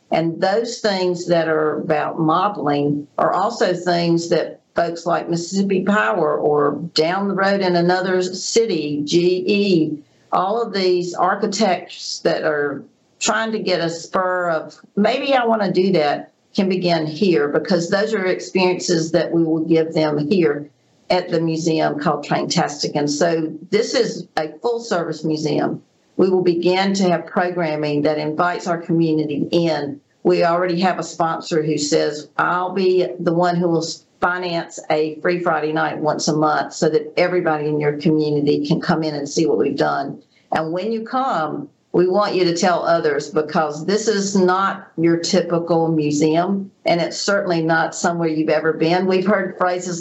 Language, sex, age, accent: English, female, 50-69, American